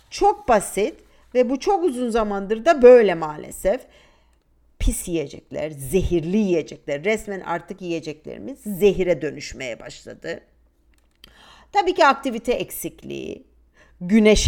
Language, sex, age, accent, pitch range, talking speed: Turkish, female, 50-69, native, 165-250 Hz, 105 wpm